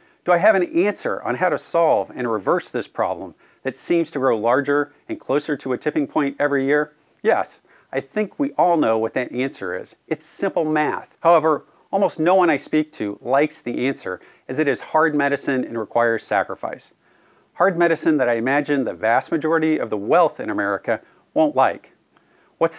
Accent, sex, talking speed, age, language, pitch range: American, male, 190 wpm, 40-59, English, 125-170 Hz